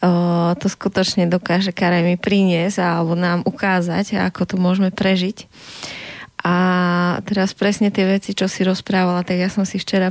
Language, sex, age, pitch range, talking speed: Slovak, female, 20-39, 180-195 Hz, 160 wpm